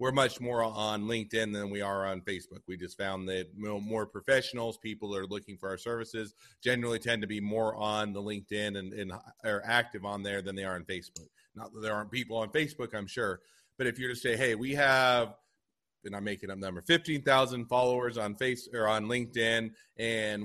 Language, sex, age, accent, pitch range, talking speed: English, male, 30-49, American, 105-125 Hz, 220 wpm